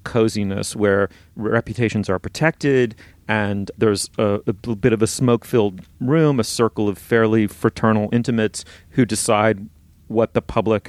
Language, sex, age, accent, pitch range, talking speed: English, male, 40-59, American, 100-115 Hz, 140 wpm